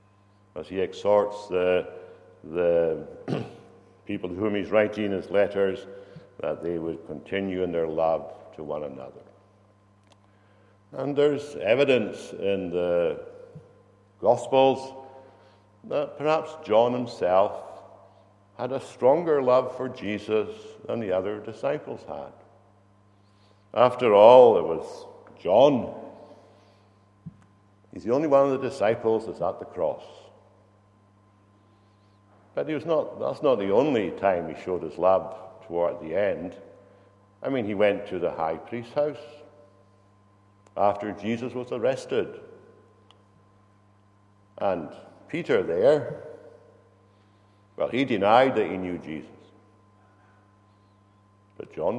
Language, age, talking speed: English, 60-79, 115 wpm